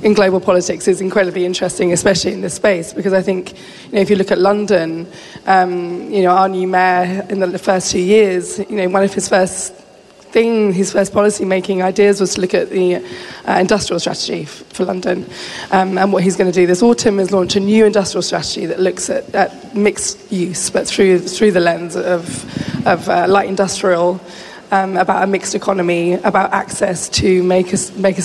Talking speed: 200 wpm